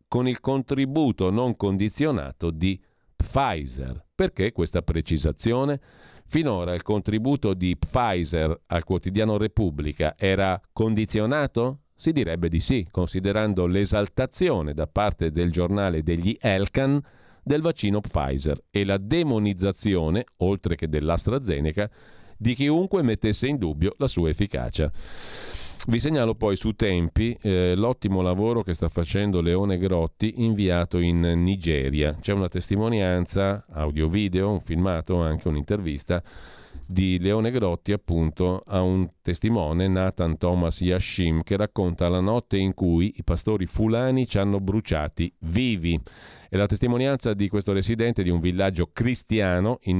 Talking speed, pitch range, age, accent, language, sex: 130 wpm, 85-110 Hz, 40-59, native, Italian, male